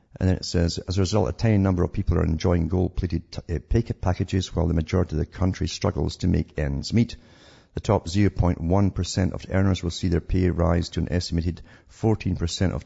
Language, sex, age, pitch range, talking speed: English, male, 50-69, 85-100 Hz, 205 wpm